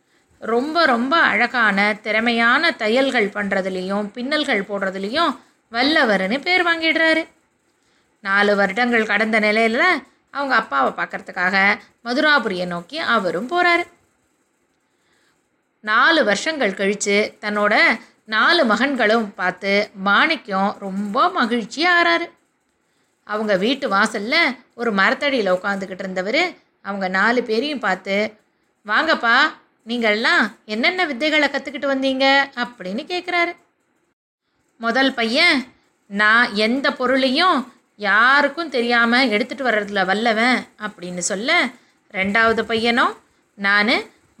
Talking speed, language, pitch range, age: 90 wpm, Tamil, 205-285 Hz, 20-39